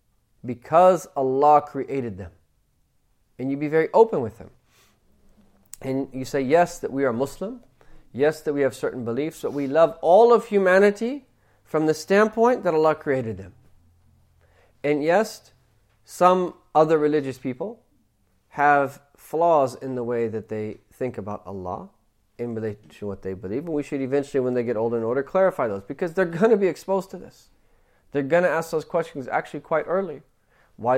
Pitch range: 110-155 Hz